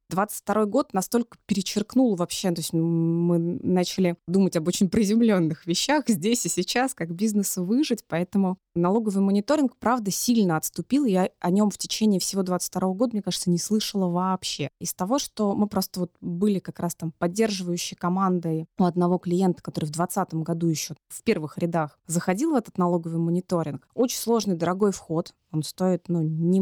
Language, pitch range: Russian, 170-210 Hz